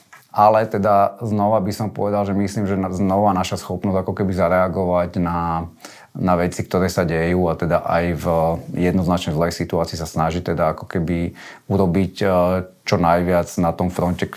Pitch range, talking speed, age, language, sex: 80-95 Hz, 165 wpm, 30-49, Slovak, male